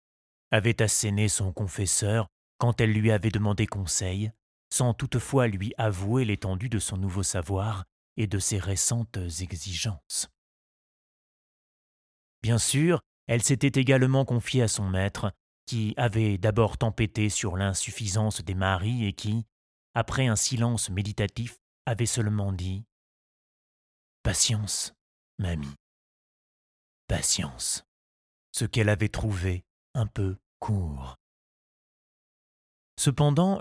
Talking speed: 110 wpm